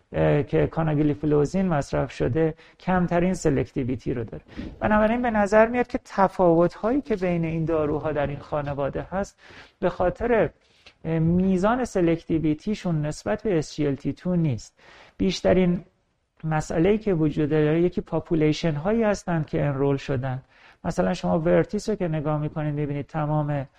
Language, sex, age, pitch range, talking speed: Persian, male, 40-59, 150-185 Hz, 130 wpm